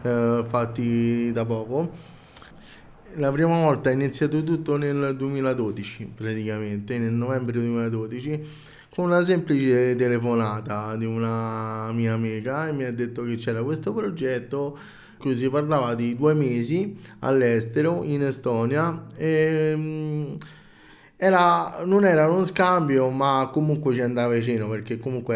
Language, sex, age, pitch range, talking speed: Italian, male, 20-39, 120-150 Hz, 125 wpm